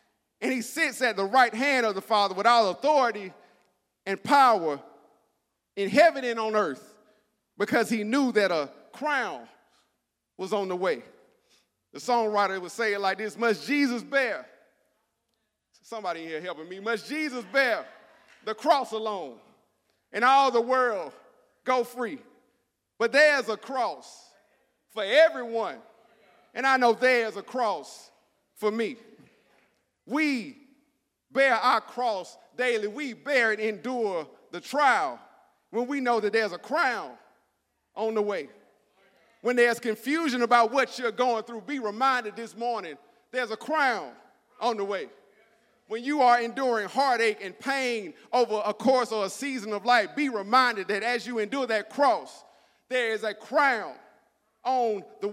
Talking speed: 150 wpm